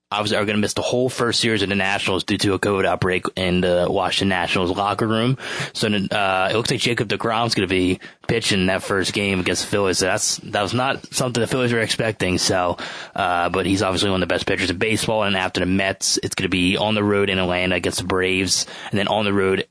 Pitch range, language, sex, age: 90-110 Hz, English, male, 20-39